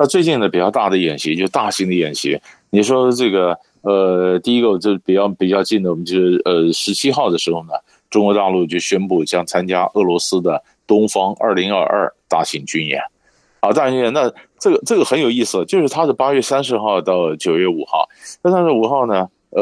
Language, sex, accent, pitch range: Chinese, male, native, 95-140 Hz